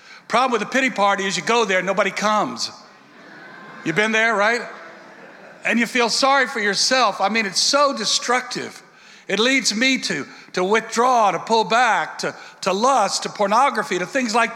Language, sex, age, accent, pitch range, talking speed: English, male, 60-79, American, 195-245 Hz, 175 wpm